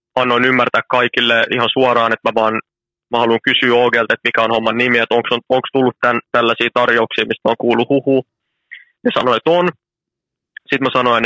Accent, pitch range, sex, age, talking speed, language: native, 115-130 Hz, male, 20-39, 185 wpm, Finnish